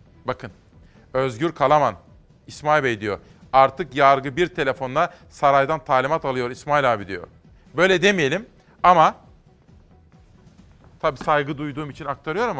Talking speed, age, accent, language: 115 wpm, 40-59, native, Turkish